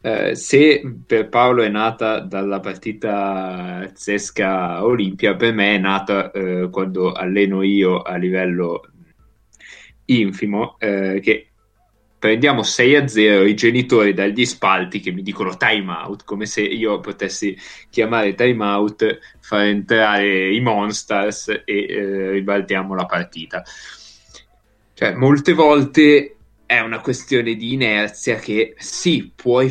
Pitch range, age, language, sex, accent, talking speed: 95-115 Hz, 20-39, Italian, male, native, 125 wpm